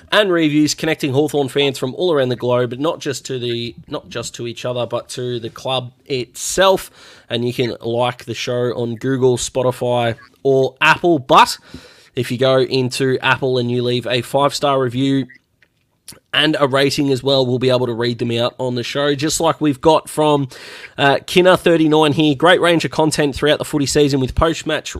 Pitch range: 125-150 Hz